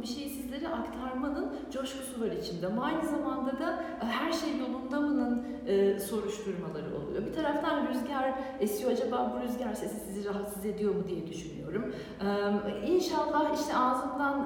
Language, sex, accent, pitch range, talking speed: Turkish, female, native, 220-300 Hz, 145 wpm